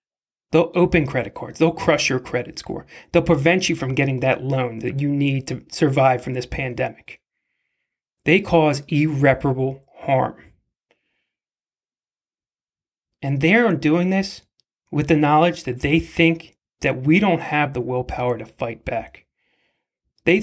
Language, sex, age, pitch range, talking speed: English, male, 30-49, 135-165 Hz, 140 wpm